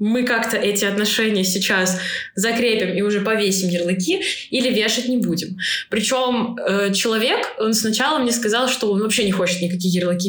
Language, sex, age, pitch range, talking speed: Russian, female, 20-39, 190-235 Hz, 155 wpm